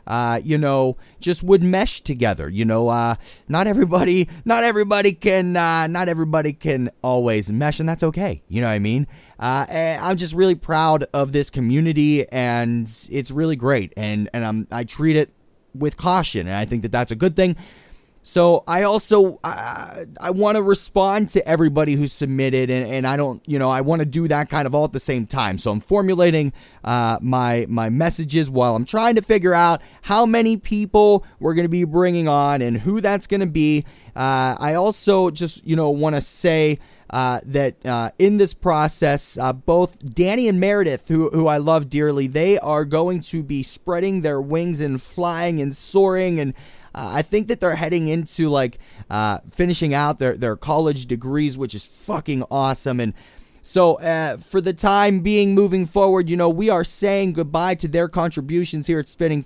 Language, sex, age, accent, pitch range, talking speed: English, male, 30-49, American, 130-175 Hz, 195 wpm